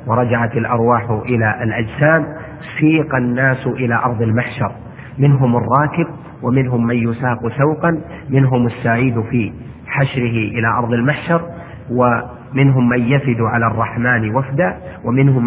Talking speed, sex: 115 wpm, male